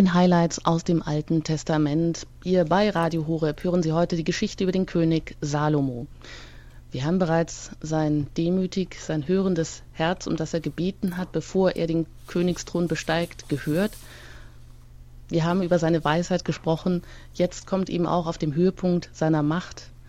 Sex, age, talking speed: female, 30-49, 155 wpm